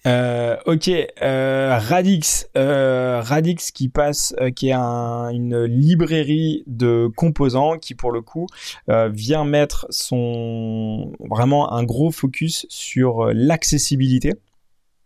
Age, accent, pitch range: 20-39, French, 115-140 Hz